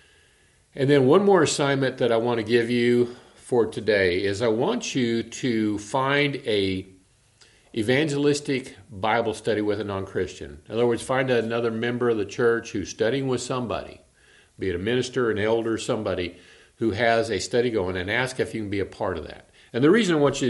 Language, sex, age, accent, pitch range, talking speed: English, male, 50-69, American, 100-130 Hz, 195 wpm